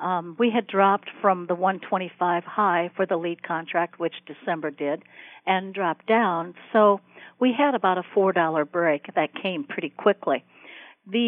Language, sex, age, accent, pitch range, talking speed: English, female, 60-79, American, 170-200 Hz, 160 wpm